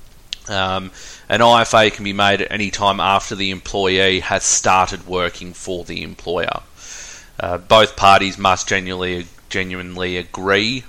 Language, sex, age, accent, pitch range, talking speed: English, male, 30-49, Australian, 95-105 Hz, 140 wpm